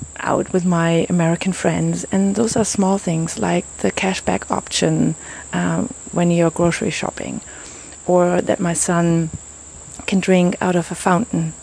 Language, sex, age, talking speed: English, female, 30-49, 155 wpm